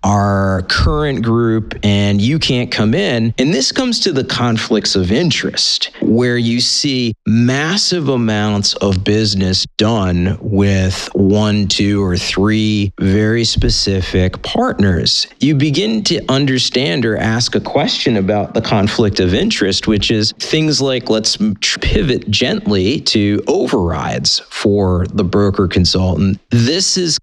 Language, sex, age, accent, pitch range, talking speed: English, male, 40-59, American, 95-125 Hz, 130 wpm